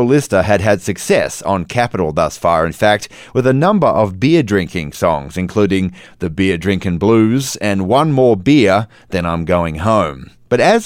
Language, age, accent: English, 30-49, Australian